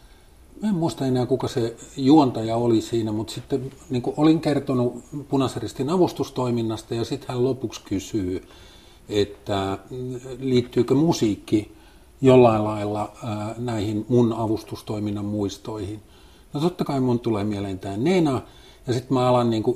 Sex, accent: male, native